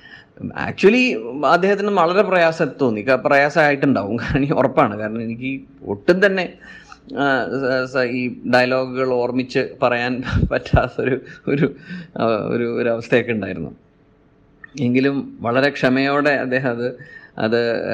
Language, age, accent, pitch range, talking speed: Malayalam, 30-49, native, 115-145 Hz, 85 wpm